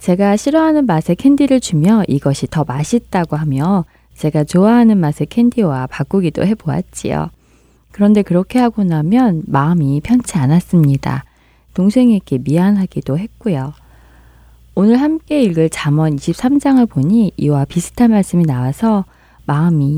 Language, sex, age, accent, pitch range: Korean, female, 20-39, native, 140-210 Hz